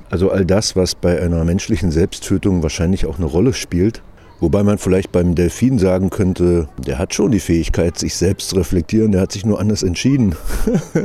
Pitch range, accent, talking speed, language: 85-100 Hz, German, 190 wpm, German